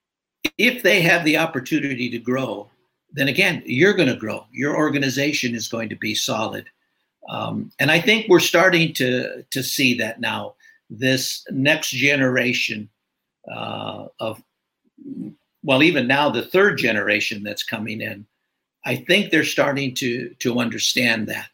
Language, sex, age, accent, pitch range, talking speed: English, male, 60-79, American, 115-155 Hz, 150 wpm